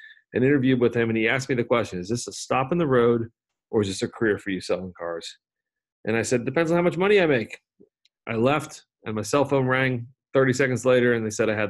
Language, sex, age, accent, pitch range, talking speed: English, male, 40-59, American, 110-140 Hz, 260 wpm